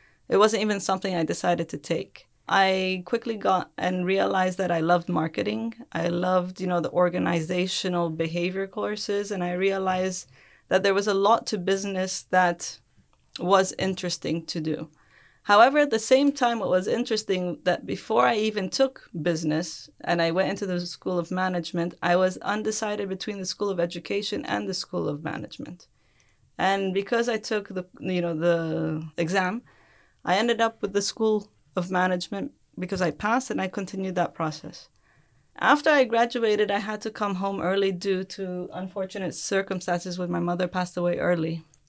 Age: 20-39